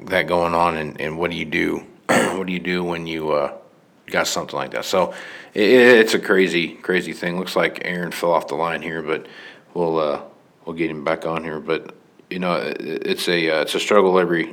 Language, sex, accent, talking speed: English, male, American, 230 wpm